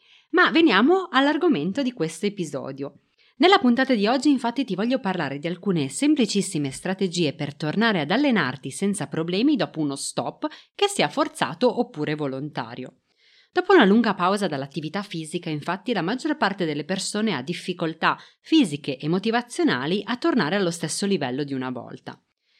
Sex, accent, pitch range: female, native, 155-245 Hz